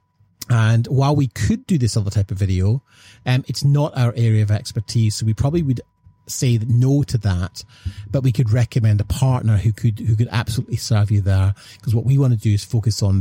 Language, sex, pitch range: English, male, 105-125 Hz